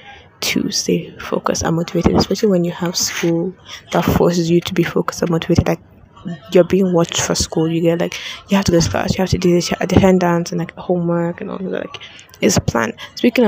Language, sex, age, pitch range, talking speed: English, female, 10-29, 165-190 Hz, 225 wpm